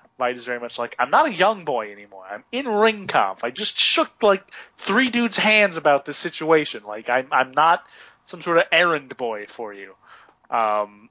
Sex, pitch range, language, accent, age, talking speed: male, 125-195 Hz, English, American, 30-49, 200 wpm